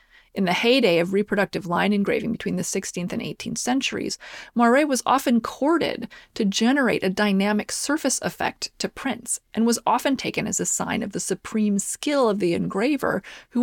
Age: 30-49